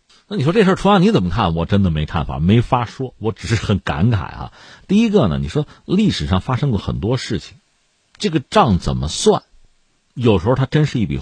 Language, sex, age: Chinese, male, 50-69